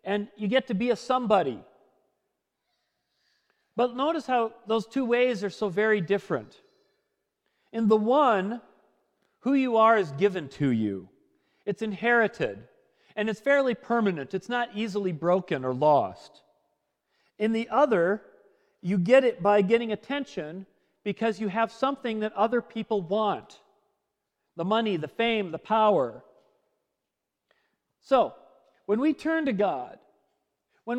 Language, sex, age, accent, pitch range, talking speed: English, male, 40-59, American, 205-255 Hz, 135 wpm